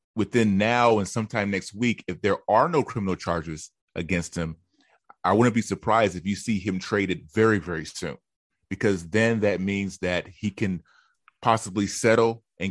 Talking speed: 170 wpm